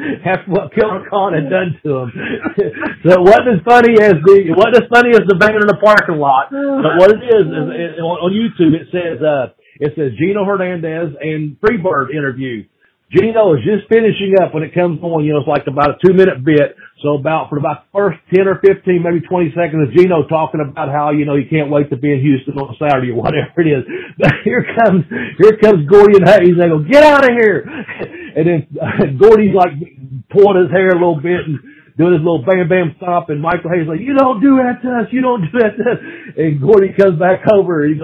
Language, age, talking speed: English, 50-69, 240 wpm